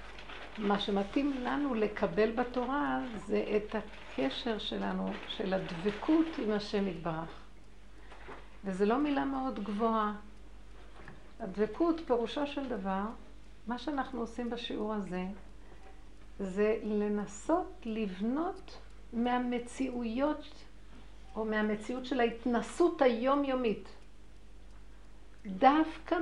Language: Hebrew